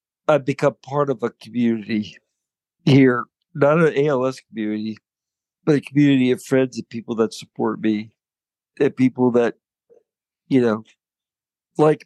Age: 50-69